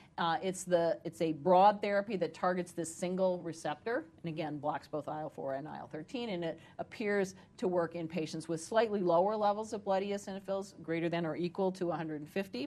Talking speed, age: 185 wpm, 40-59